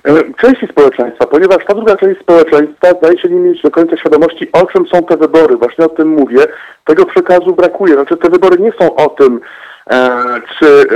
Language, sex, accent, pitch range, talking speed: Polish, male, native, 145-210 Hz, 190 wpm